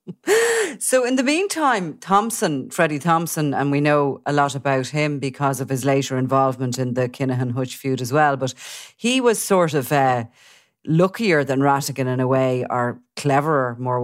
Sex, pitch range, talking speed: female, 130-150 Hz, 175 wpm